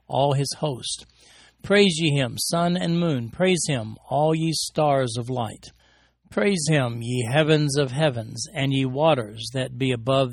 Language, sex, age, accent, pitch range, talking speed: English, male, 60-79, American, 135-170 Hz, 165 wpm